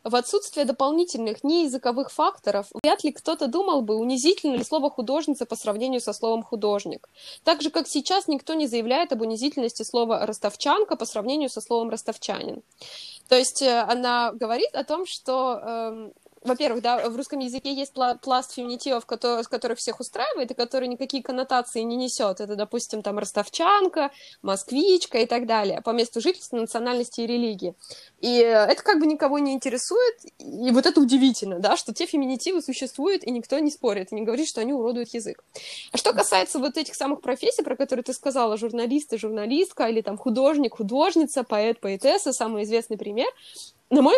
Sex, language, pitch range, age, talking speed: female, Russian, 230-290 Hz, 20-39, 175 wpm